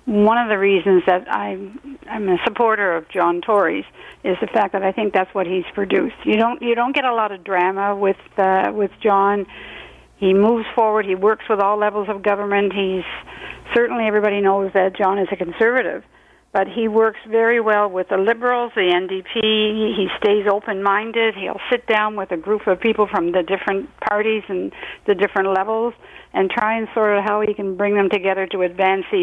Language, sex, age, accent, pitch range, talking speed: English, female, 60-79, American, 190-225 Hz, 200 wpm